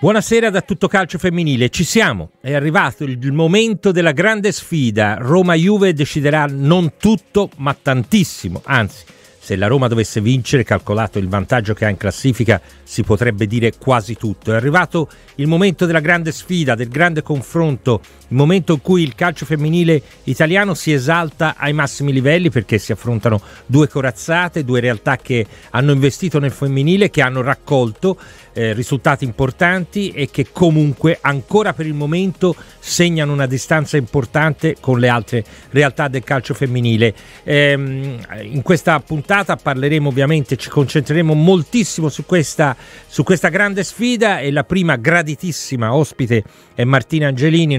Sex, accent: male, native